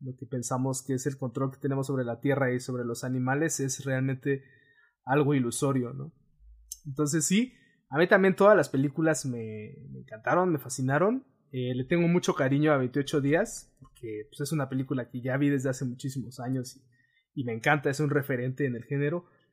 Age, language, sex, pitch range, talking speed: 20-39, Spanish, male, 130-155 Hz, 195 wpm